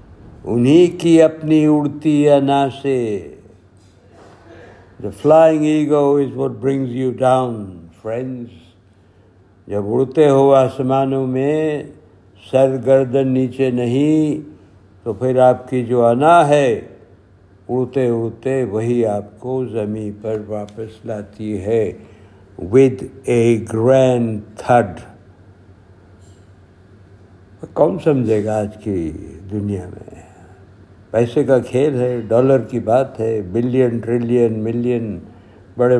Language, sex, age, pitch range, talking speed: Urdu, male, 60-79, 100-130 Hz, 100 wpm